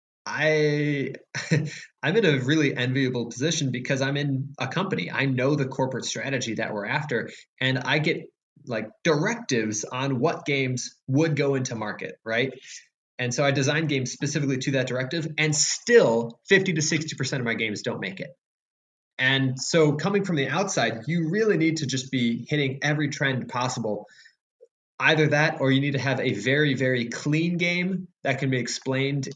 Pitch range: 125-155 Hz